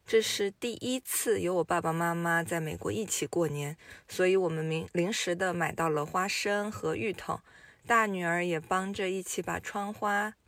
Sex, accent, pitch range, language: female, native, 165-205 Hz, Chinese